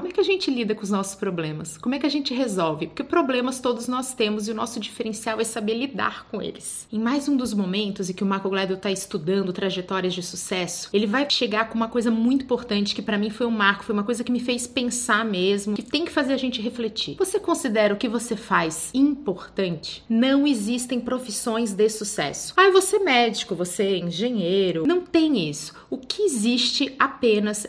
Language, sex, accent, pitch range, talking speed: Portuguese, female, Brazilian, 210-275 Hz, 215 wpm